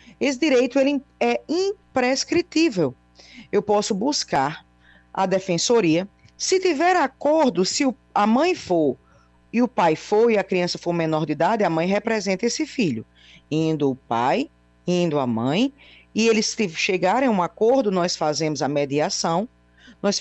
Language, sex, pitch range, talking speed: Portuguese, female, 155-240 Hz, 145 wpm